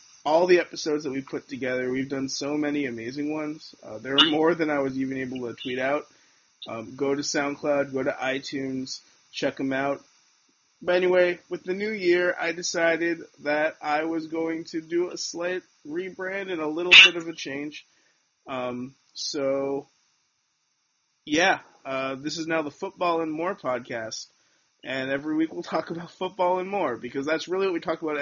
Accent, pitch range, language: American, 140-180 Hz, English